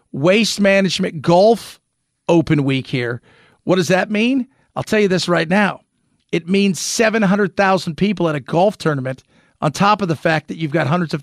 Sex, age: male, 40-59